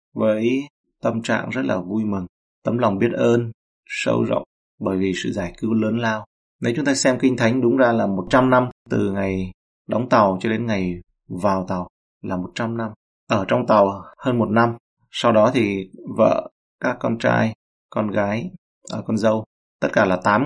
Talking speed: 190 wpm